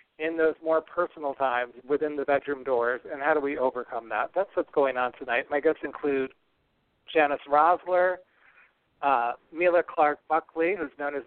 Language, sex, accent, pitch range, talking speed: English, male, American, 135-160 Hz, 170 wpm